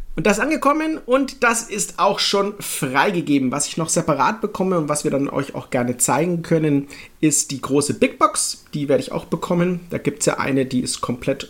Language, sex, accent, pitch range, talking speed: German, male, German, 125-180 Hz, 215 wpm